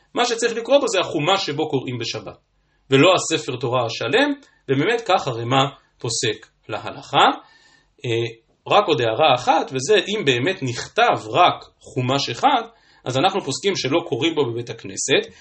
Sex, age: male, 40-59